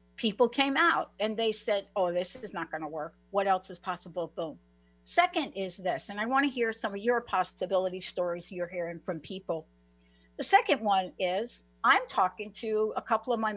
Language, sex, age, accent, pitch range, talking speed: English, female, 60-79, American, 170-245 Hz, 205 wpm